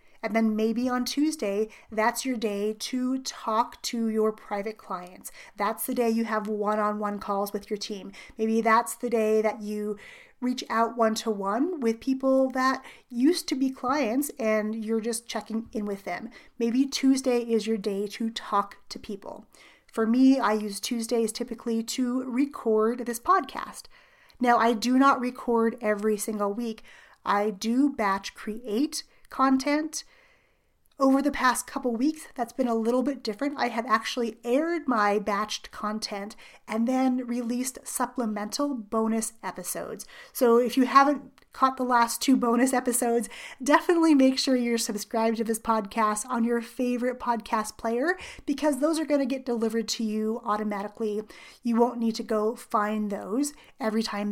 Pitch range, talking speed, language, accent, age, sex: 215-260 Hz, 160 wpm, English, American, 30-49, female